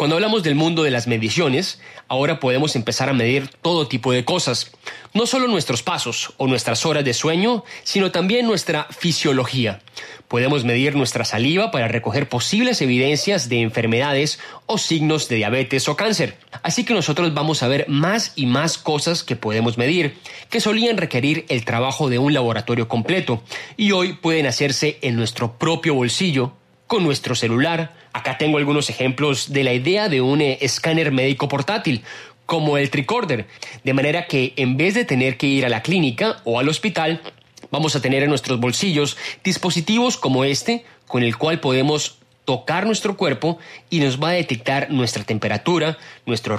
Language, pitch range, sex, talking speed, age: Spanish, 125-165 Hz, male, 170 wpm, 30-49